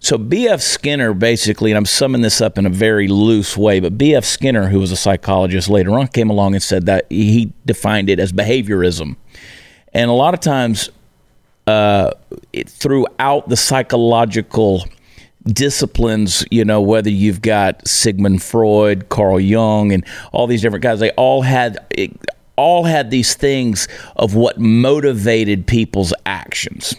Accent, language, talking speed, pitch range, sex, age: American, English, 155 wpm, 100-120 Hz, male, 40-59